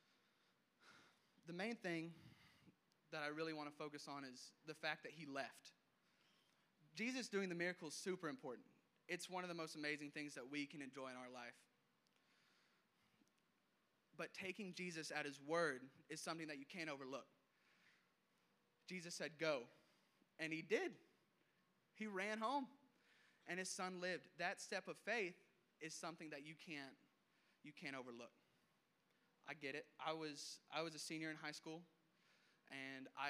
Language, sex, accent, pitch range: English, male, American, 135-170 Hz